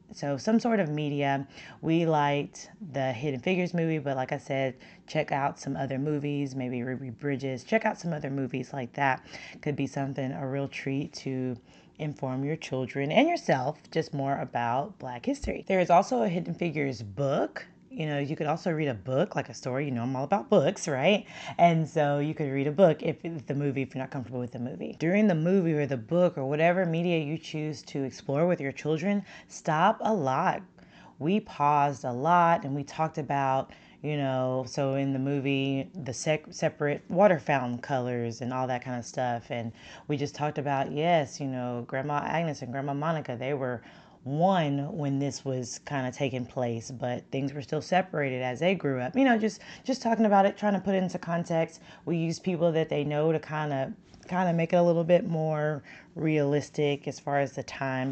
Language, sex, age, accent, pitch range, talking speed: English, female, 30-49, American, 135-165 Hz, 210 wpm